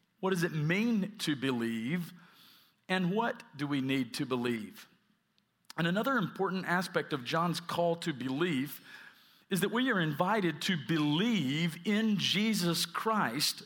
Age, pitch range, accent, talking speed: 50-69, 170-220 Hz, American, 140 wpm